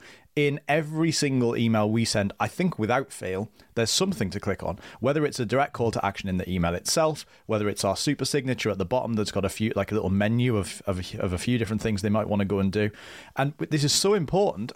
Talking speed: 250 wpm